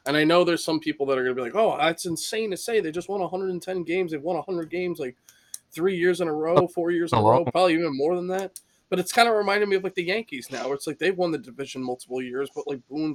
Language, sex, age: English, male, 20-39